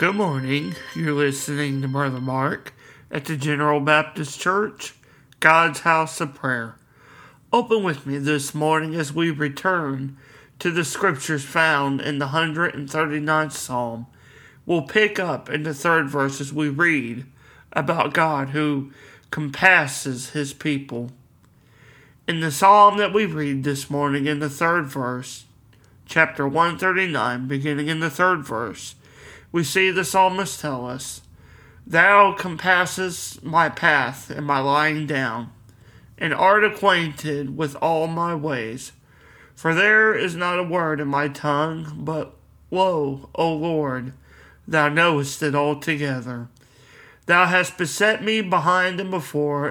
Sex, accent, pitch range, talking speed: male, American, 135-170 Hz, 135 wpm